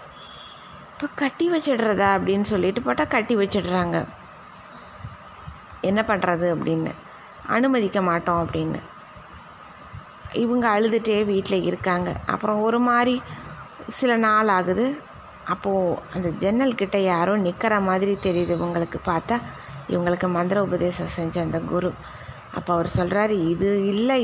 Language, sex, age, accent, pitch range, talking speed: Tamil, female, 20-39, native, 185-220 Hz, 110 wpm